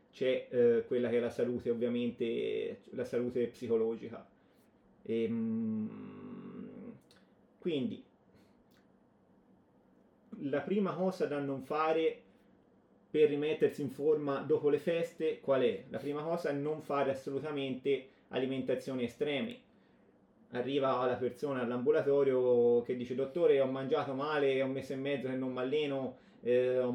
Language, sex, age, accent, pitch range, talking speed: Italian, male, 30-49, native, 130-165 Hz, 125 wpm